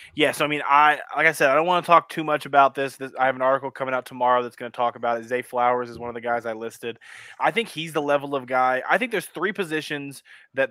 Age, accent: 20-39, American